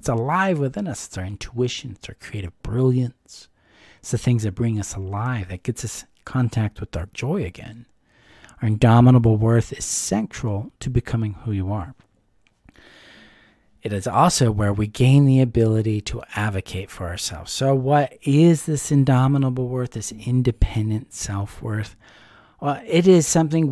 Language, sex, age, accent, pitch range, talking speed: English, male, 40-59, American, 105-135 Hz, 155 wpm